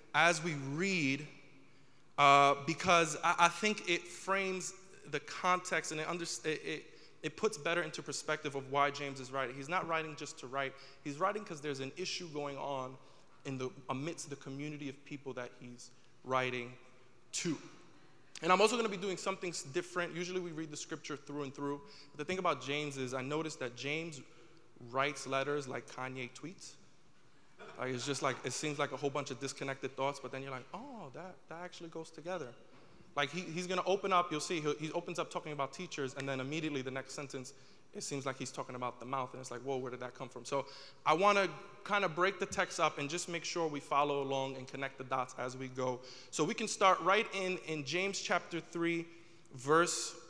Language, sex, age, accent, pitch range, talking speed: English, male, 20-39, American, 135-175 Hz, 210 wpm